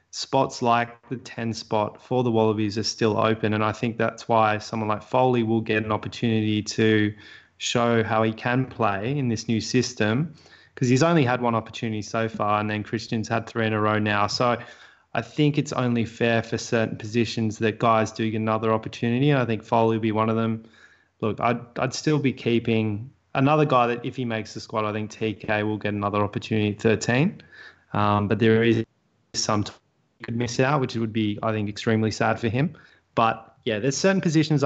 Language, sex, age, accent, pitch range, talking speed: English, male, 20-39, Australian, 110-125 Hz, 205 wpm